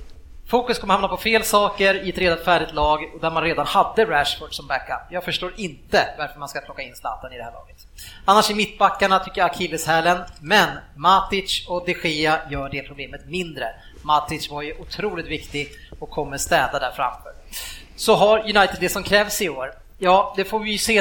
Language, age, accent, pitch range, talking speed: Swedish, 30-49, Norwegian, 155-195 Hz, 205 wpm